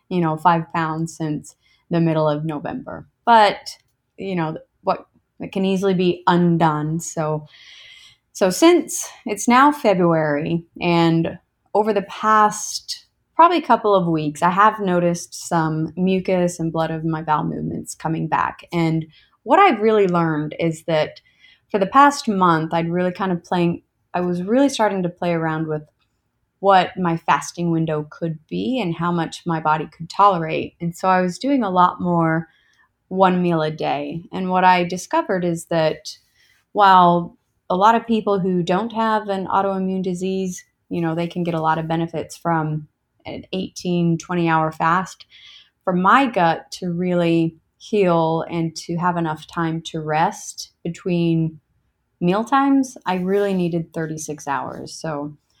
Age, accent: 20-39, American